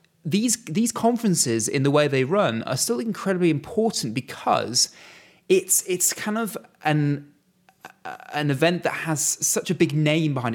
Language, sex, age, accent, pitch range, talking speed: English, male, 30-49, British, 125-160 Hz, 160 wpm